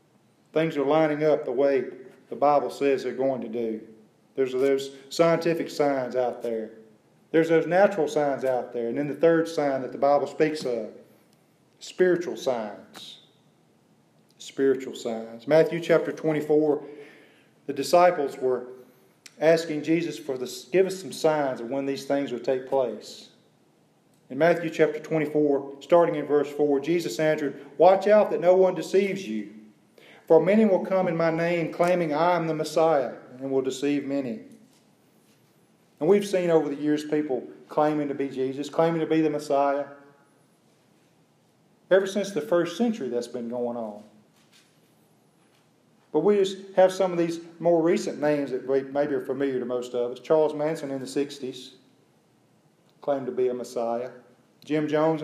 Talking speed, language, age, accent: 160 wpm, English, 40-59, American